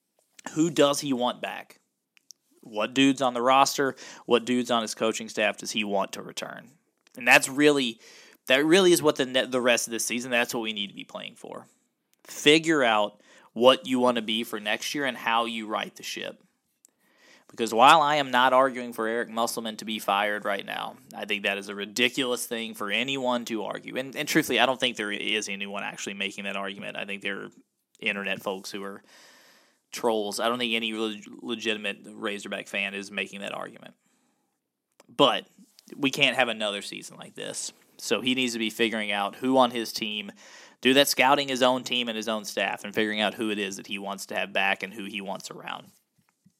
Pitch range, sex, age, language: 105-130 Hz, male, 20-39, English